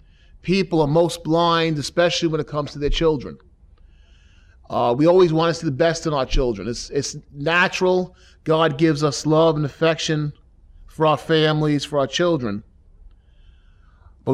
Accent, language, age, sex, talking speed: American, English, 30-49, male, 160 wpm